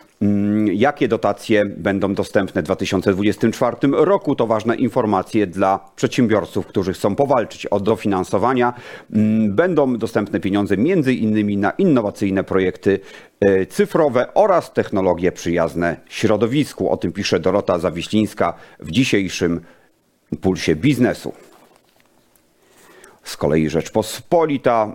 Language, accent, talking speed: Polish, native, 100 wpm